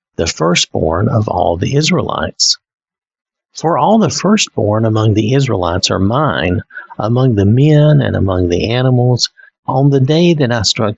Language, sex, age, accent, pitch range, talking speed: English, male, 50-69, American, 105-150 Hz, 155 wpm